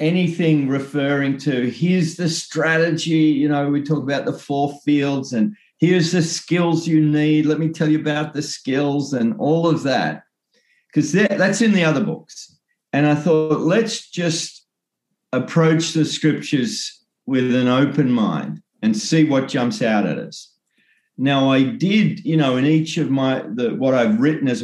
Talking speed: 170 wpm